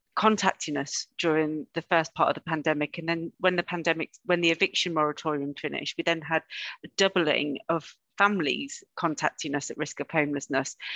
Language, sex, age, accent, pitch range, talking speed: English, female, 40-59, British, 155-180 Hz, 175 wpm